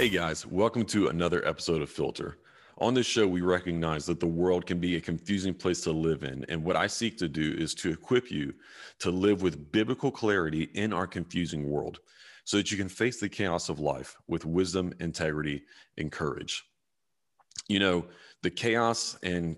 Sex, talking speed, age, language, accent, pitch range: male, 190 wpm, 30-49, English, American, 80-90 Hz